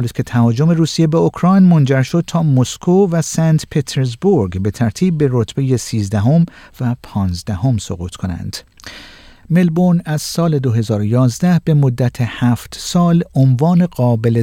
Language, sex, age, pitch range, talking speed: Persian, male, 50-69, 115-155 Hz, 135 wpm